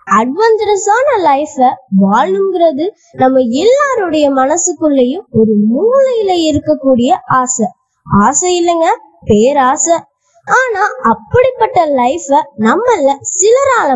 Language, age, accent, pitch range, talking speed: Tamil, 20-39, native, 240-385 Hz, 75 wpm